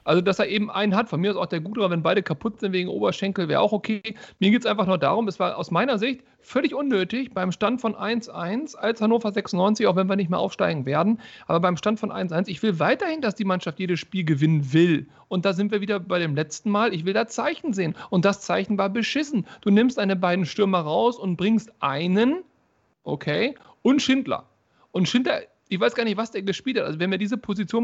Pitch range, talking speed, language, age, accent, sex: 180-235 Hz, 235 wpm, German, 40-59, German, male